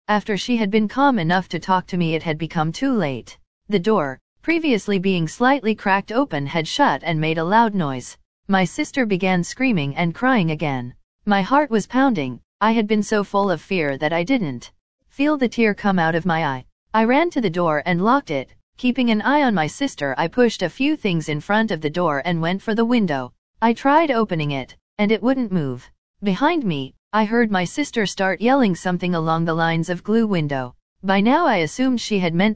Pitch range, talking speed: 160-230 Hz, 215 wpm